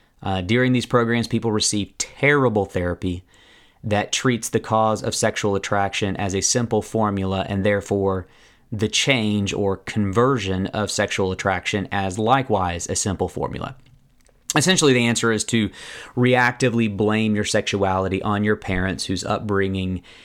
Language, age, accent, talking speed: English, 30-49, American, 140 wpm